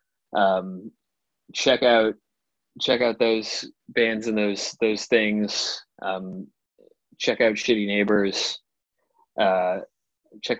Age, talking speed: 20-39, 100 wpm